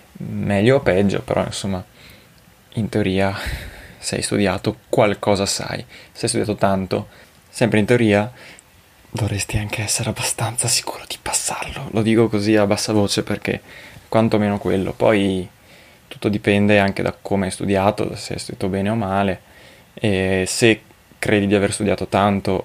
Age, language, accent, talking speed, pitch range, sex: 20-39, Italian, native, 150 wpm, 100-110 Hz, male